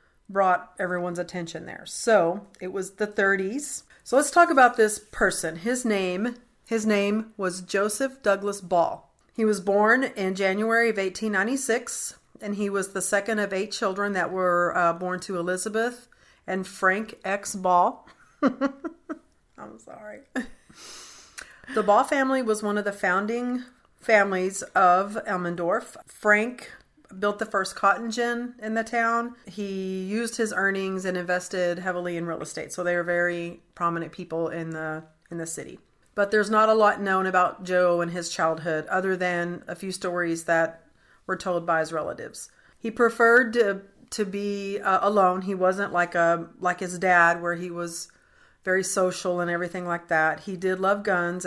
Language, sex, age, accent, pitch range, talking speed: English, female, 40-59, American, 175-220 Hz, 165 wpm